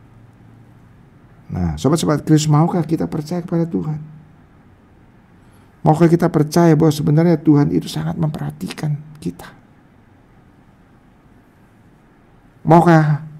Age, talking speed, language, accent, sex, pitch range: 50-69, 85 wpm, English, Indonesian, male, 90-140 Hz